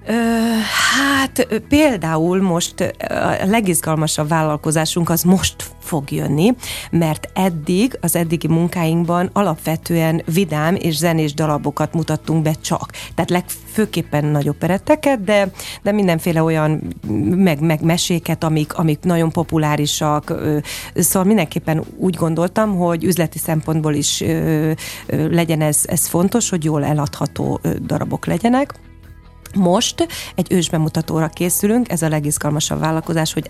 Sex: female